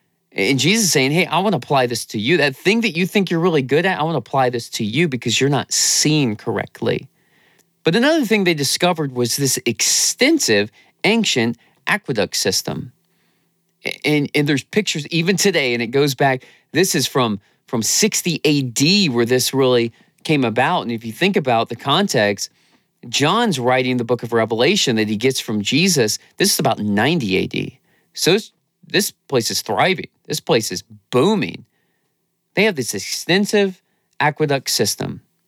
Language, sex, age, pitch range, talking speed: English, male, 30-49, 120-185 Hz, 175 wpm